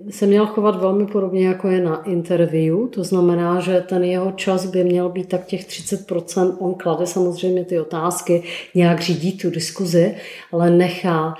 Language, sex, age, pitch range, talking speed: Czech, female, 30-49, 170-190 Hz, 170 wpm